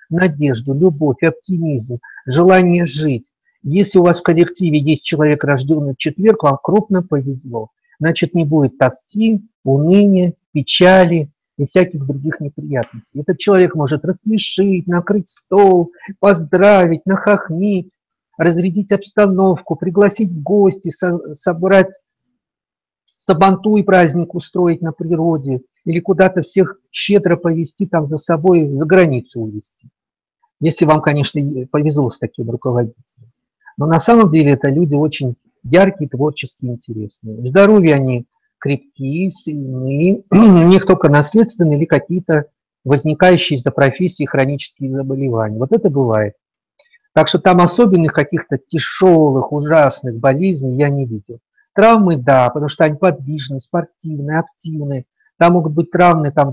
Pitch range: 140-185 Hz